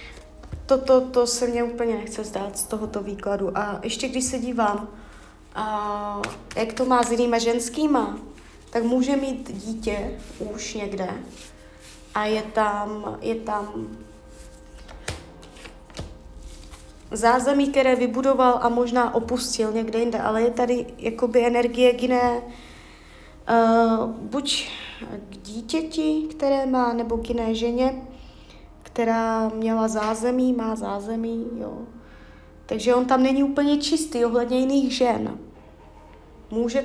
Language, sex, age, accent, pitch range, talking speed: Czech, female, 20-39, native, 205-255 Hz, 120 wpm